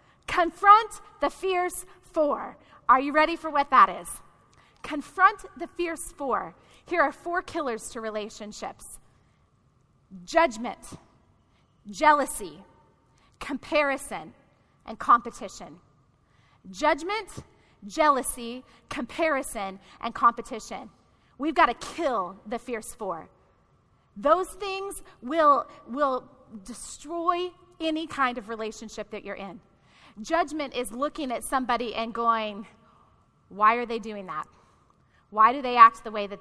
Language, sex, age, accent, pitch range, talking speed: English, female, 30-49, American, 210-285 Hz, 115 wpm